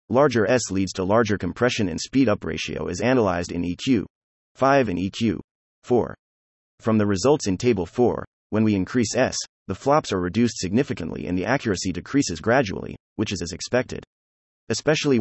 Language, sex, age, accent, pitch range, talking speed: English, male, 30-49, American, 90-120 Hz, 165 wpm